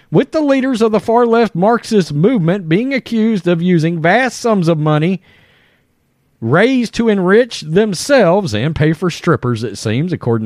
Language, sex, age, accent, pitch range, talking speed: English, male, 40-59, American, 155-230 Hz, 155 wpm